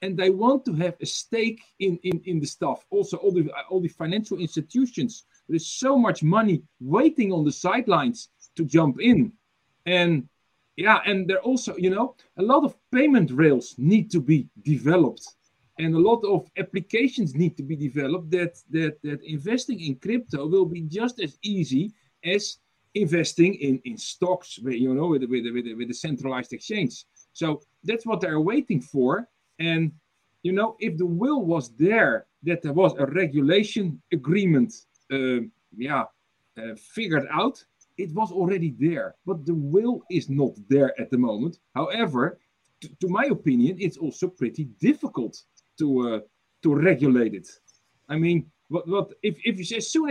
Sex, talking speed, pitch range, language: male, 170 wpm, 145-205 Hz, English